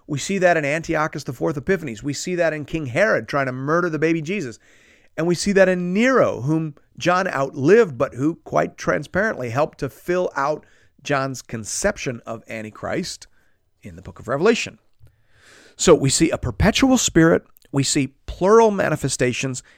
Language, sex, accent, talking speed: English, male, American, 170 wpm